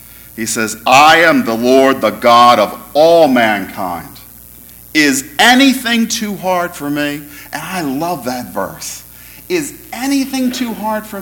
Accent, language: American, English